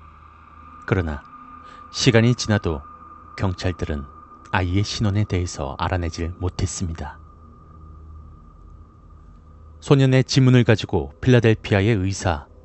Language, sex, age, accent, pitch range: Korean, male, 30-49, native, 85-120 Hz